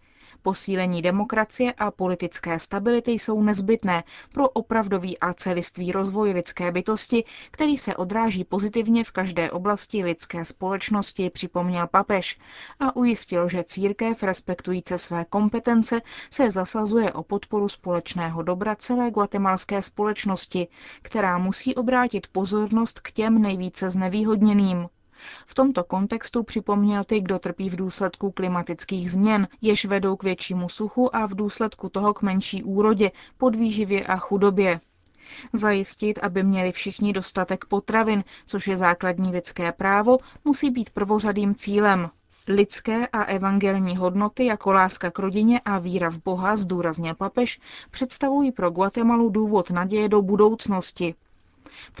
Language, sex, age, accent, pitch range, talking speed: Czech, female, 20-39, native, 185-220 Hz, 130 wpm